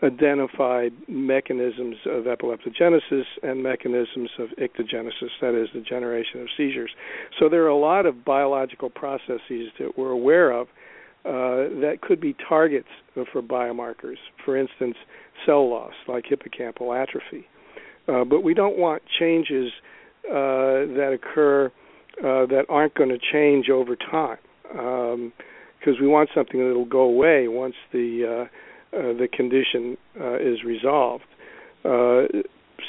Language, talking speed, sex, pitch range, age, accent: English, 140 wpm, male, 120-140 Hz, 50-69, American